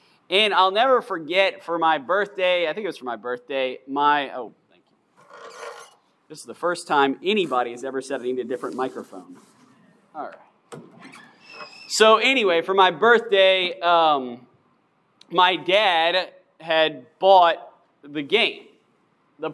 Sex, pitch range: male, 165-210 Hz